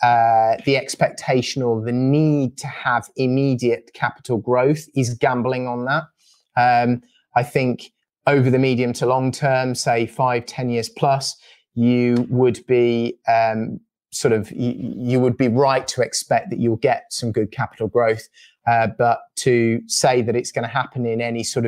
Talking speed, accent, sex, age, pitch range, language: 170 wpm, British, male, 30-49, 115-130 Hz, English